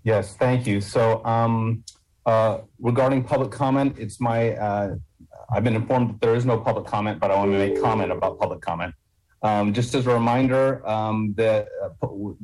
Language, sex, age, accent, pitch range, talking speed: English, male, 30-49, American, 100-120 Hz, 185 wpm